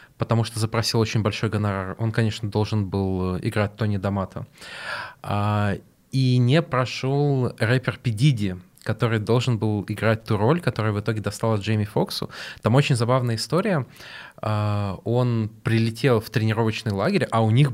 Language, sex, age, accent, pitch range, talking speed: Russian, male, 20-39, native, 110-135 Hz, 140 wpm